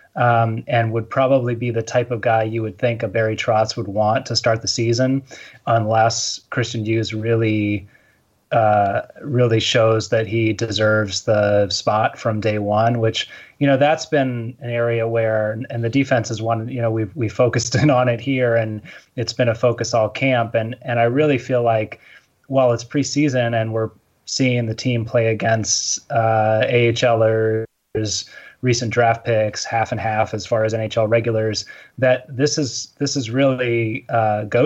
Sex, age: male, 30-49